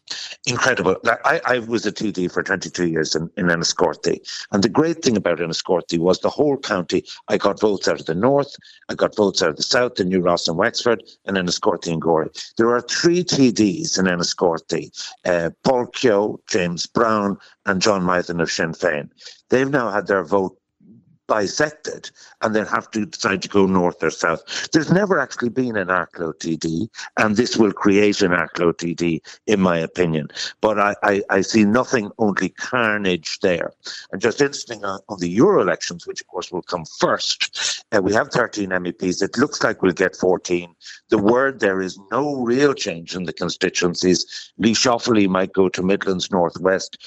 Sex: male